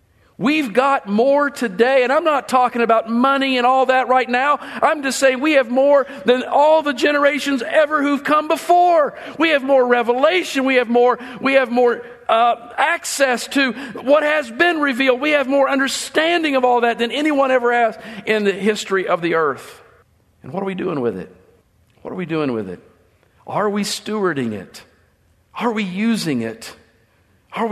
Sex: male